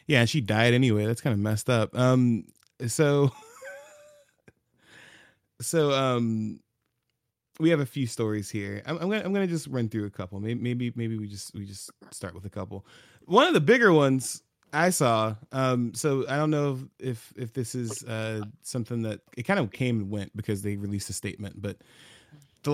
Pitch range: 110-140 Hz